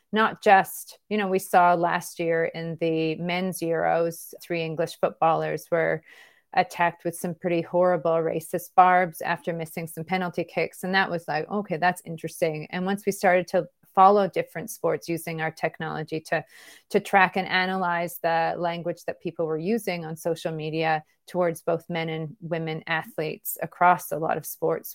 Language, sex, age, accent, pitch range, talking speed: English, female, 30-49, American, 165-185 Hz, 170 wpm